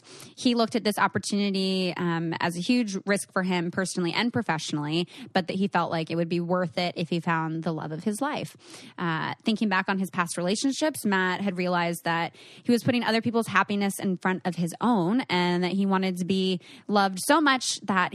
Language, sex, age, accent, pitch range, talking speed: English, female, 20-39, American, 170-210 Hz, 215 wpm